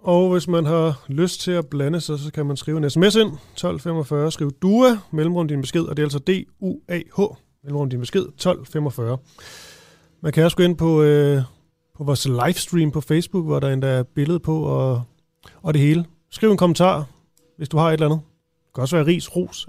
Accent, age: native, 30-49